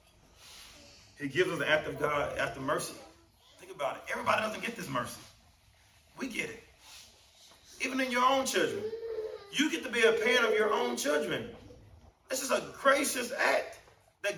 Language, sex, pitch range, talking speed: English, male, 120-195 Hz, 180 wpm